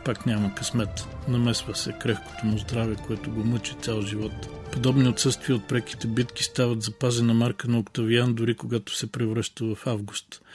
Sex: male